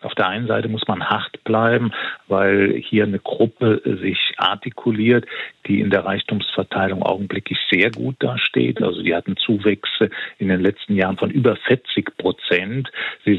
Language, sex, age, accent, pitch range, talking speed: German, male, 50-69, German, 95-115 Hz, 155 wpm